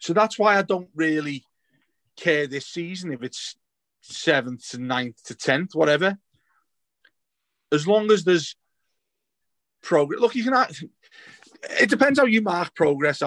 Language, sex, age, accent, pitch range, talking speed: English, male, 30-49, British, 125-165 Hz, 145 wpm